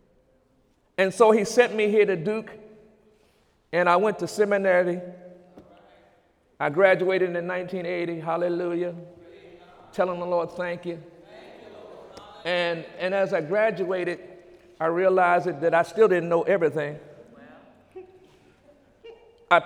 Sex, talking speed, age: male, 115 wpm, 50-69